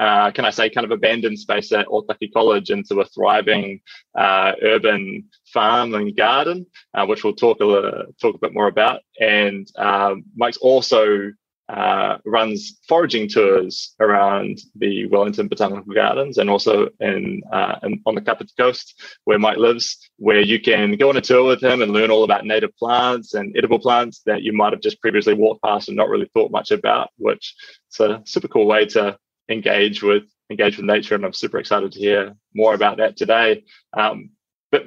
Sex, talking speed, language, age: male, 190 wpm, English, 20-39